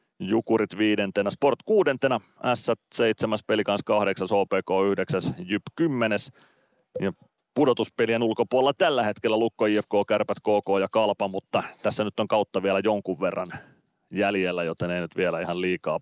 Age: 30-49